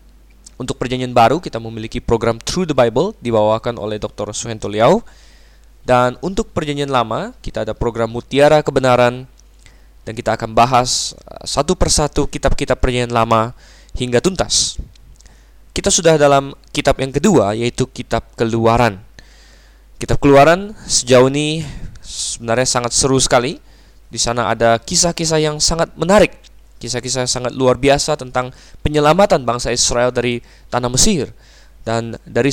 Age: 10-29